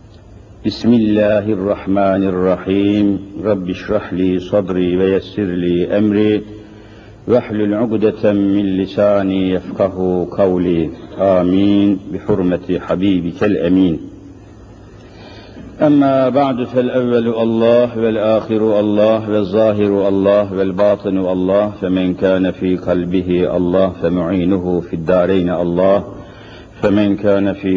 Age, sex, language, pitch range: 60-79, male, Turkish, 95-110 Hz